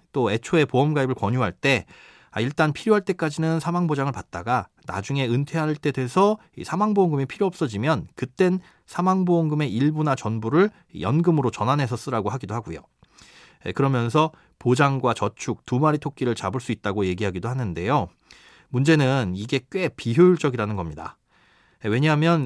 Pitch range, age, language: 120-170 Hz, 30-49, Korean